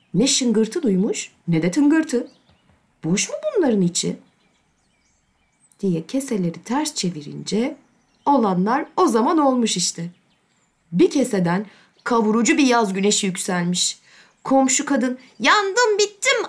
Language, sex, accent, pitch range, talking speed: Turkish, female, native, 205-310 Hz, 110 wpm